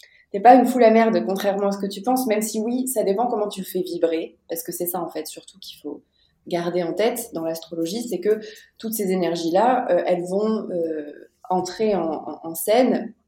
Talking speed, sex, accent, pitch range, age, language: 210 wpm, female, French, 175-225 Hz, 20-39, French